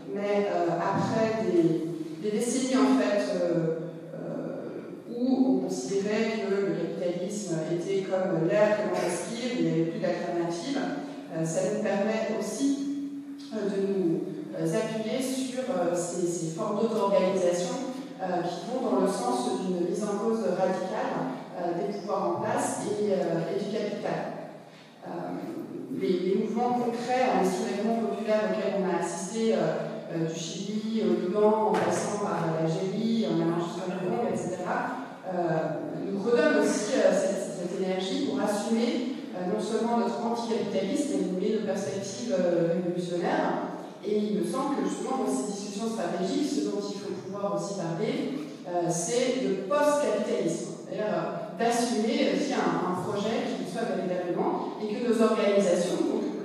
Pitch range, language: 180-225 Hz, French